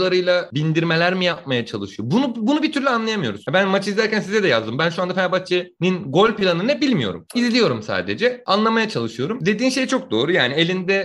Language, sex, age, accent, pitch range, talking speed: Turkish, male, 30-49, native, 125-185 Hz, 180 wpm